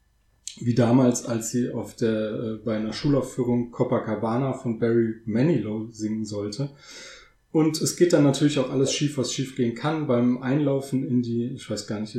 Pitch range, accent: 115-135 Hz, German